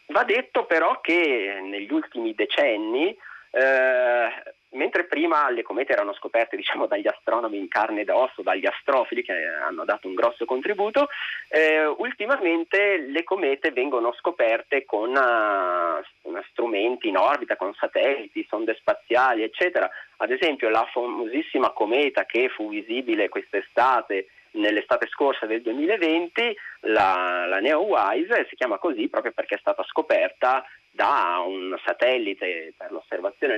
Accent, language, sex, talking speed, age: native, Italian, male, 130 wpm, 30-49